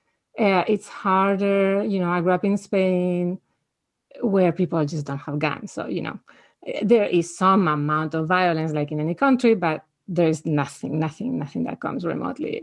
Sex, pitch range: female, 175-210 Hz